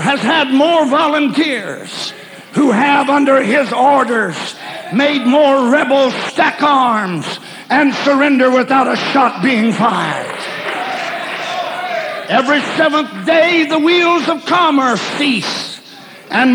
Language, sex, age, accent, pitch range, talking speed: English, male, 60-79, American, 255-330 Hz, 105 wpm